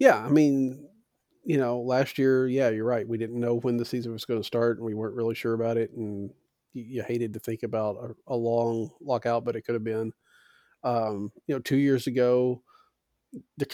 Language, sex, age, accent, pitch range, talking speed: English, male, 40-59, American, 115-135 Hz, 215 wpm